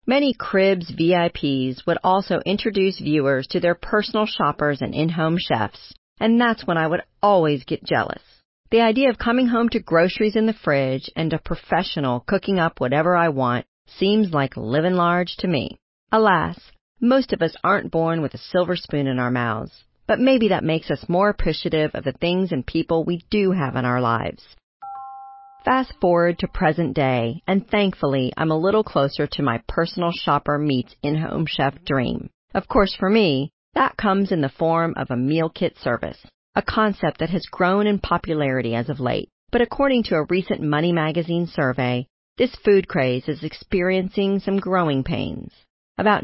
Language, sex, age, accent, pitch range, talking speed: English, female, 40-59, American, 145-200 Hz, 180 wpm